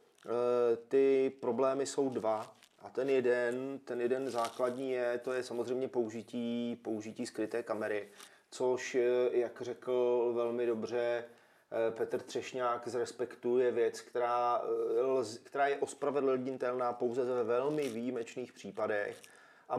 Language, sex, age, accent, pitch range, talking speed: Czech, male, 30-49, native, 120-135 Hz, 110 wpm